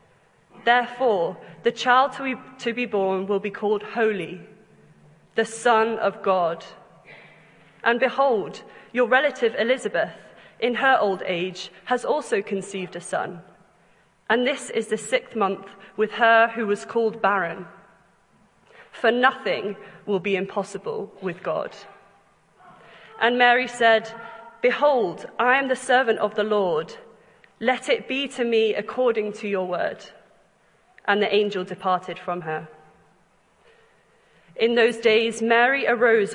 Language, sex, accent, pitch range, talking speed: English, female, British, 195-245 Hz, 130 wpm